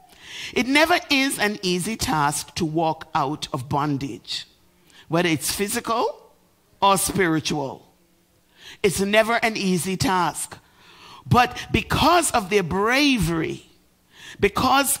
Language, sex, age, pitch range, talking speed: English, male, 50-69, 145-205 Hz, 110 wpm